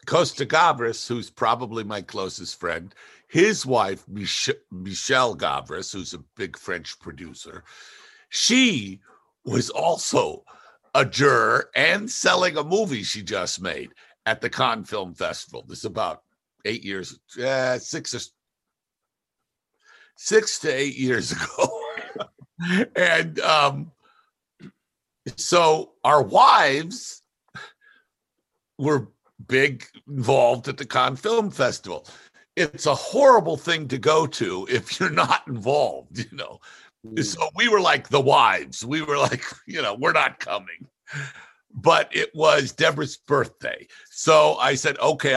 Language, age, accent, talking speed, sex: English, 60-79, American, 125 wpm, male